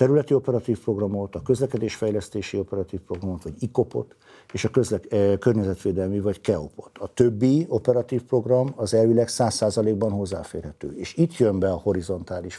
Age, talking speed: 60-79, 150 wpm